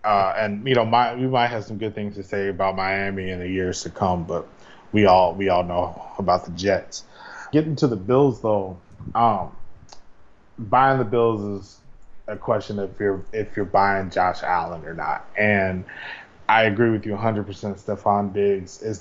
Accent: American